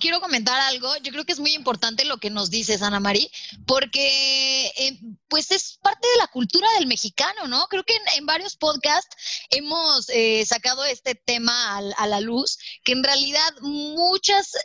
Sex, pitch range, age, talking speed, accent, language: female, 235-330 Hz, 20-39, 185 wpm, Mexican, Spanish